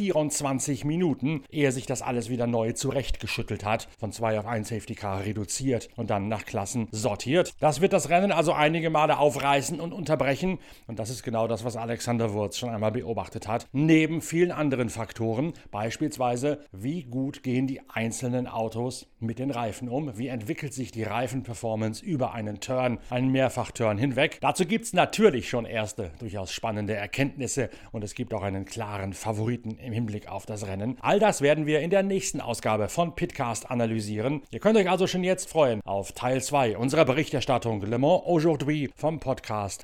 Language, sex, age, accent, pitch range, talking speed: German, male, 60-79, German, 115-150 Hz, 180 wpm